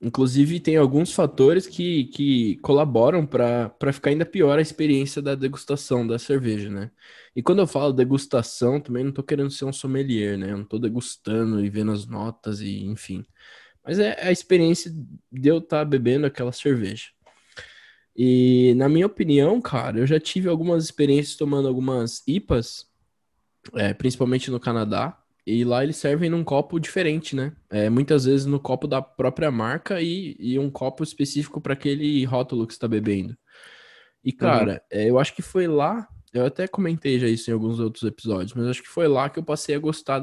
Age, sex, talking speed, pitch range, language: 10-29, male, 185 wpm, 120-150 Hz, Portuguese